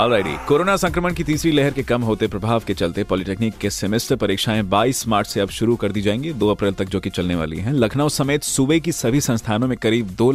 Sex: male